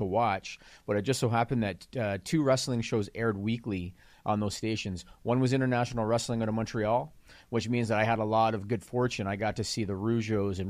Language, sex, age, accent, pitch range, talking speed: English, male, 40-59, American, 105-125 Hz, 230 wpm